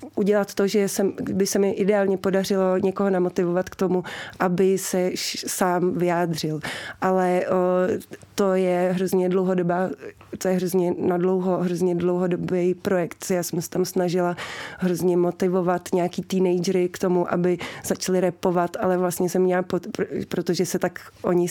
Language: Czech